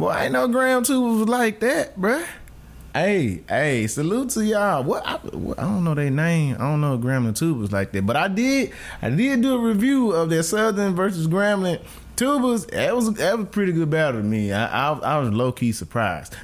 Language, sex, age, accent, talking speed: English, male, 20-39, American, 210 wpm